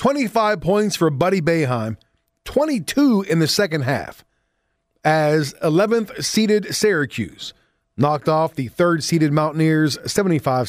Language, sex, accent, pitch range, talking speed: English, male, American, 135-185 Hz, 120 wpm